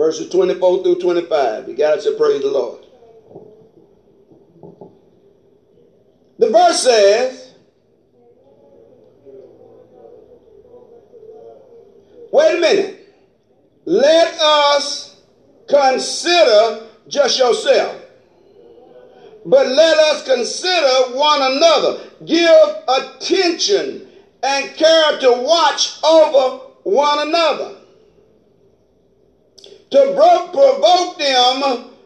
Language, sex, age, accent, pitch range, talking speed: English, male, 50-69, American, 260-405 Hz, 75 wpm